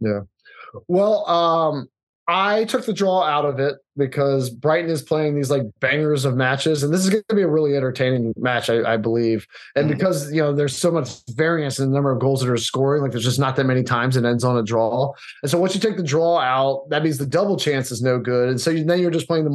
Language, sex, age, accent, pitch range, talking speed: English, male, 20-39, American, 135-165 Hz, 255 wpm